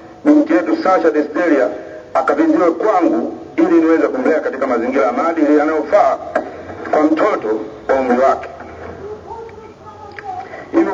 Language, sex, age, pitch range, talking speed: English, male, 50-69, 150-230 Hz, 95 wpm